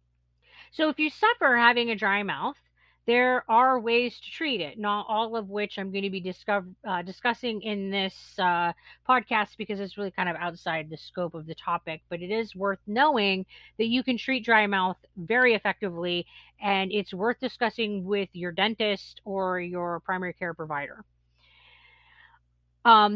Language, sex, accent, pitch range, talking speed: English, female, American, 190-250 Hz, 170 wpm